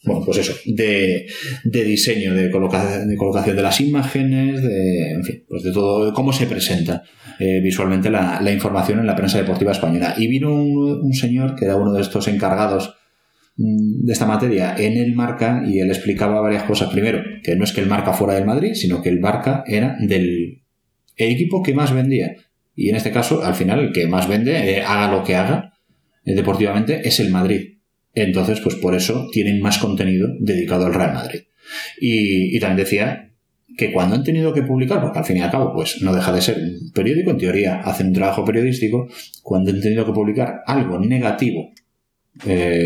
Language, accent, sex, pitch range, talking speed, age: Spanish, Spanish, male, 95-115 Hz, 205 wpm, 30-49